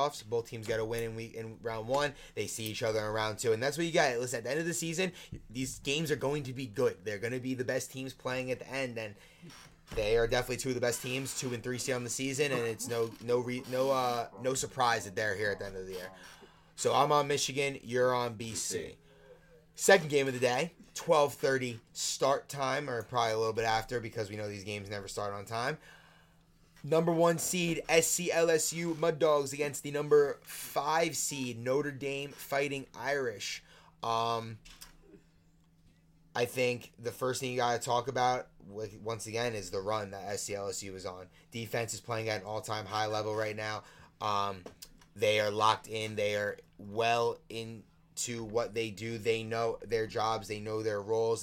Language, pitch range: English, 110-135 Hz